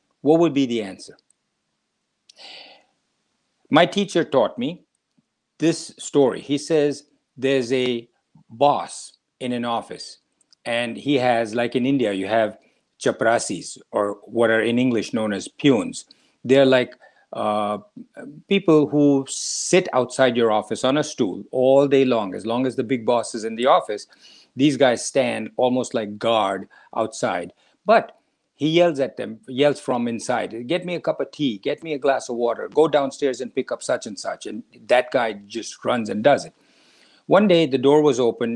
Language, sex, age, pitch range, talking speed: English, male, 50-69, 115-150 Hz, 170 wpm